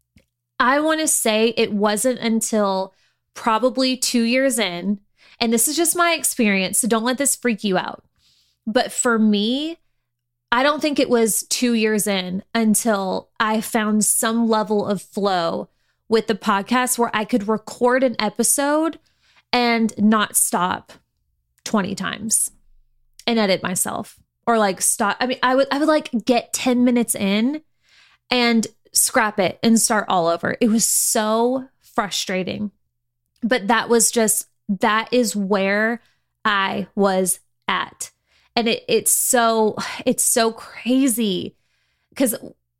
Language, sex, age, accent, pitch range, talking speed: English, female, 20-39, American, 200-245 Hz, 145 wpm